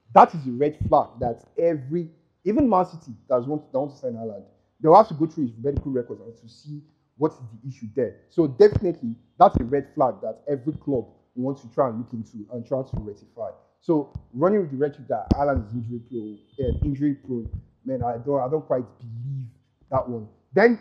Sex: male